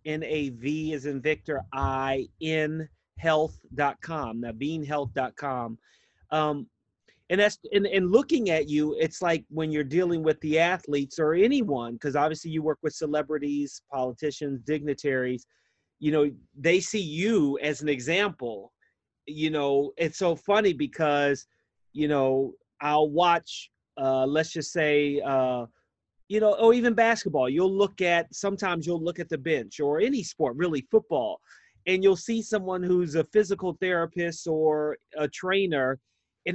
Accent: American